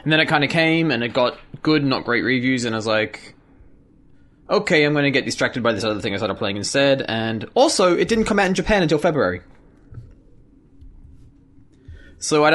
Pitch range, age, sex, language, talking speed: 105-140 Hz, 20-39, male, English, 205 wpm